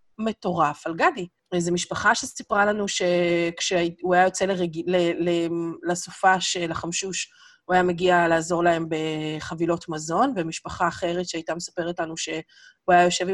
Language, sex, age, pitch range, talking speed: Hebrew, female, 30-49, 170-200 Hz, 135 wpm